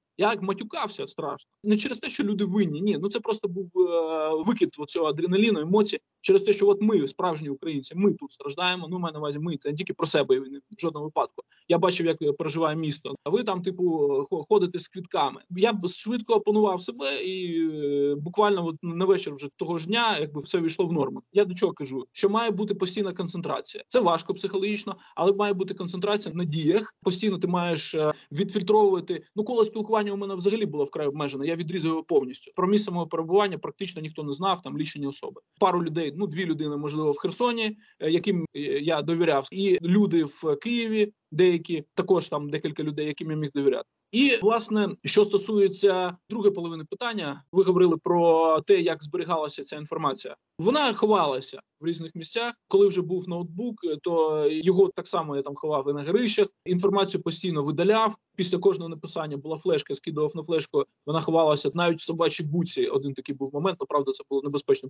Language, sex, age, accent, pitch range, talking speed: Russian, male, 20-39, native, 155-205 Hz, 185 wpm